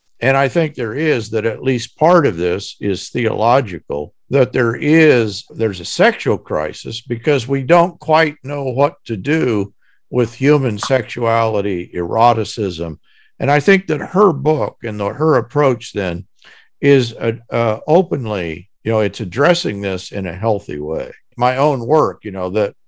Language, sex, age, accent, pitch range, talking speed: English, male, 50-69, American, 100-140 Hz, 165 wpm